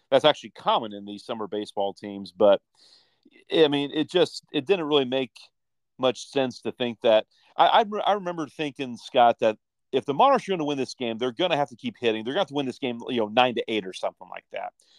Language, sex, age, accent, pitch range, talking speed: English, male, 40-59, American, 115-155 Hz, 250 wpm